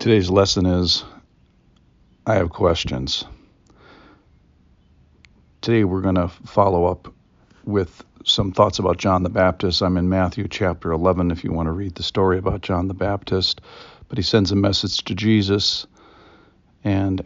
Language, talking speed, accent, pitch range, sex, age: English, 150 wpm, American, 80-95 Hz, male, 50-69